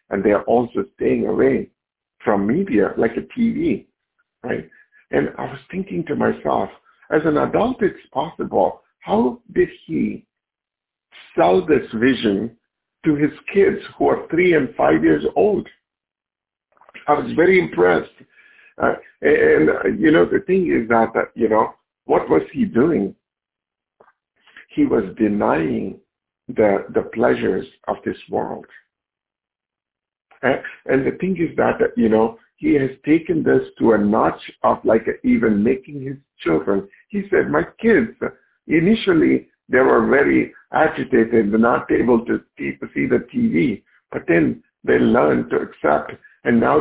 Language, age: English, 60-79